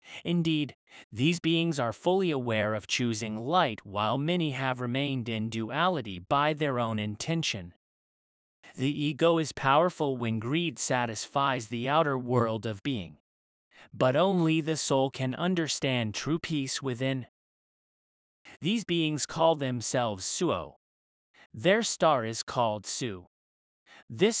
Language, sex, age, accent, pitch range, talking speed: English, male, 30-49, American, 115-160 Hz, 125 wpm